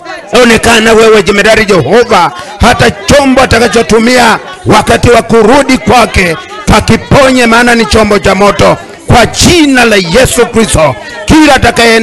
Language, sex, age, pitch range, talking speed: English, male, 50-69, 145-230 Hz, 110 wpm